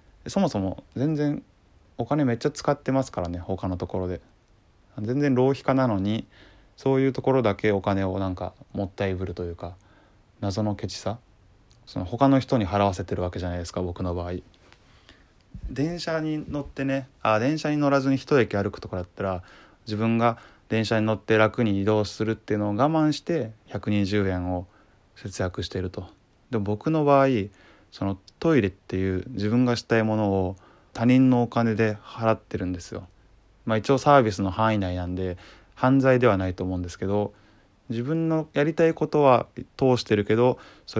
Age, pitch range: 20-39, 95-120 Hz